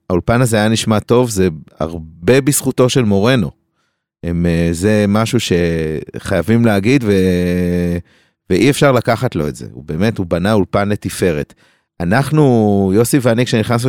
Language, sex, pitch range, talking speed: Hebrew, male, 95-120 Hz, 135 wpm